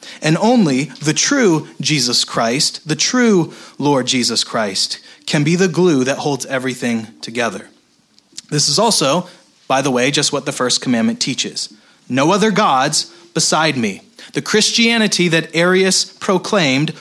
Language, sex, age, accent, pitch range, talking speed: English, male, 30-49, American, 145-185 Hz, 145 wpm